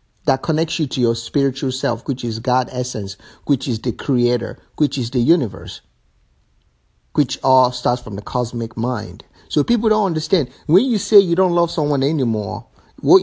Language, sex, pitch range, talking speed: English, male, 110-155 Hz, 175 wpm